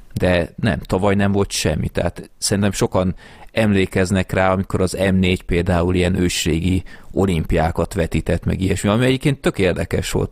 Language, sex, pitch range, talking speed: Hungarian, male, 85-100 Hz, 140 wpm